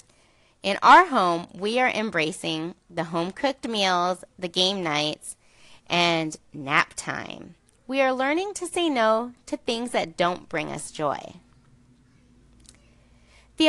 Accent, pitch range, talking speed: American, 180-265 Hz, 125 wpm